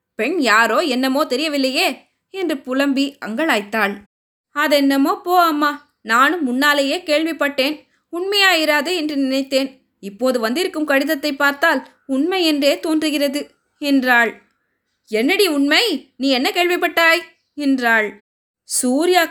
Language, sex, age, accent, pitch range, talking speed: Tamil, female, 20-39, native, 265-335 Hz, 85 wpm